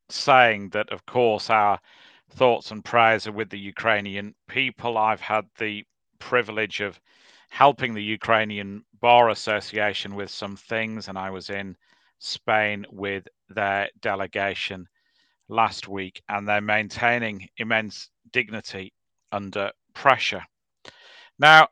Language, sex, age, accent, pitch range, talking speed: English, male, 40-59, British, 100-120 Hz, 120 wpm